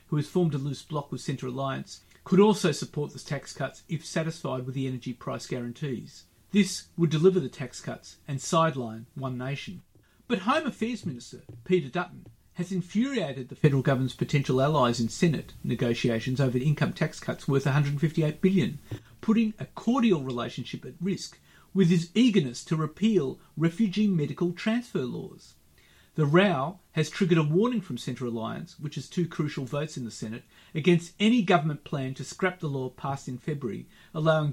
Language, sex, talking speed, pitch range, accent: English, male, 170 wpm, 130-180 Hz, Australian